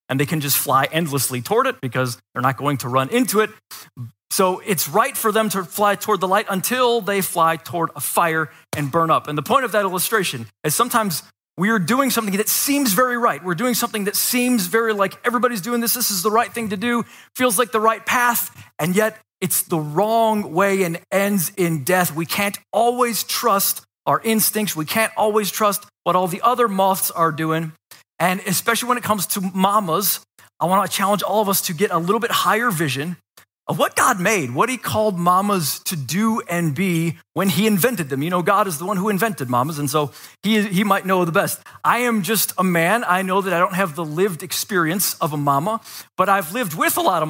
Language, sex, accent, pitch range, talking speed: English, male, American, 160-220 Hz, 225 wpm